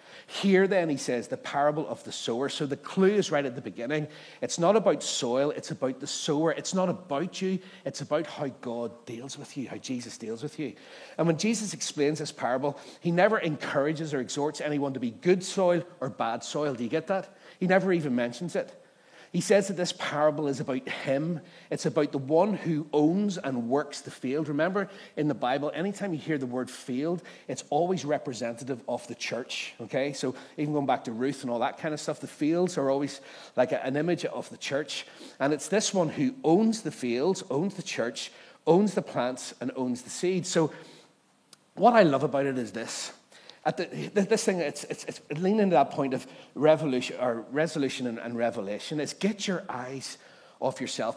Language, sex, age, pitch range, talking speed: English, male, 30-49, 135-180 Hz, 205 wpm